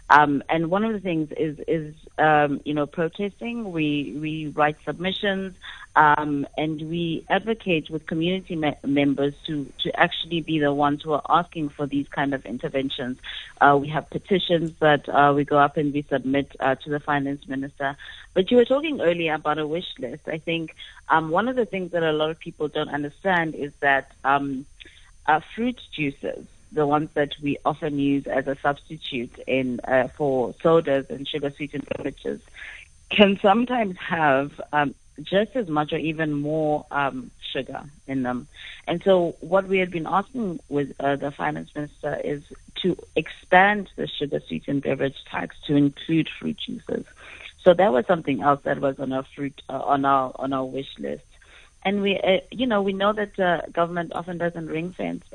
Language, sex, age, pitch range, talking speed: English, female, 30-49, 140-170 Hz, 180 wpm